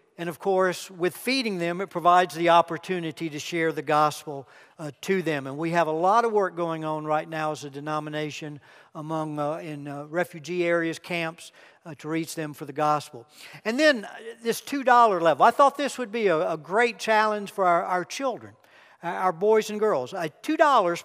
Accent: American